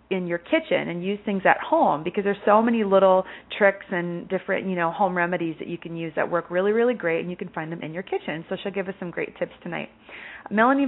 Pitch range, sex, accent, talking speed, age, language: 180-220 Hz, female, American, 255 wpm, 30-49, English